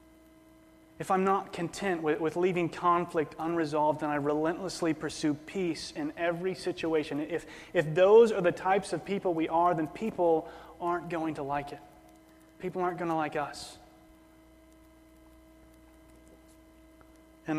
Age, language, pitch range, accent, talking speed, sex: 30-49, English, 135-180 Hz, American, 135 wpm, male